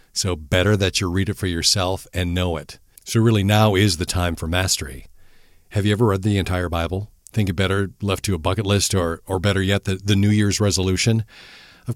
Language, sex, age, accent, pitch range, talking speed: English, male, 40-59, American, 85-110 Hz, 220 wpm